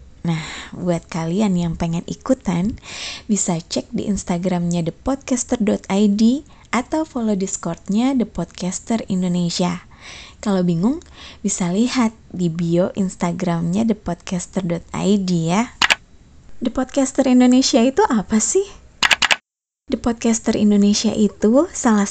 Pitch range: 185-235 Hz